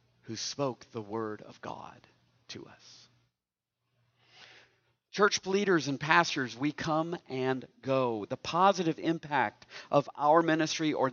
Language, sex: English, male